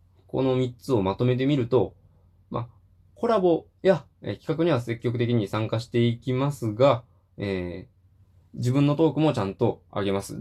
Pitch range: 95-140 Hz